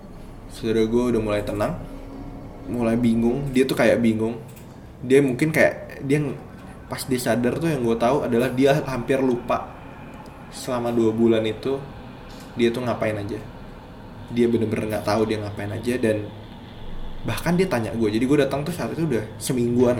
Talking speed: 160 wpm